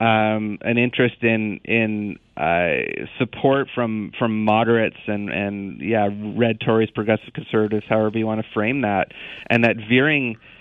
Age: 30-49